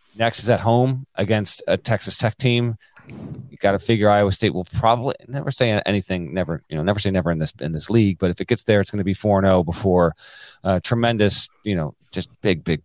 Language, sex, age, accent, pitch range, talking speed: English, male, 30-49, American, 90-115 Hz, 240 wpm